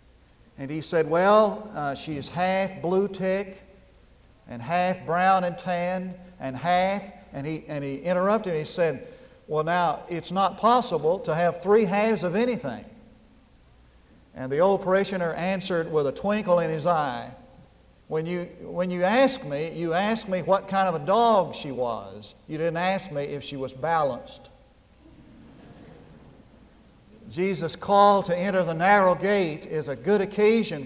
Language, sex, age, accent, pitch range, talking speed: English, male, 50-69, American, 160-210 Hz, 155 wpm